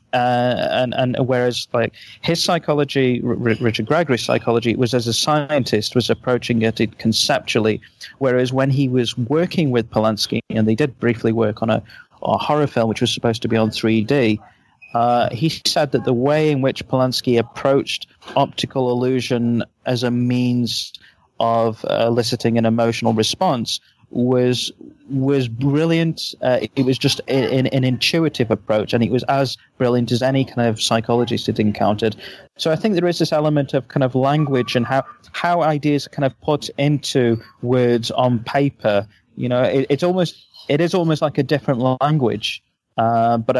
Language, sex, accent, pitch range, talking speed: English, male, British, 115-140 Hz, 170 wpm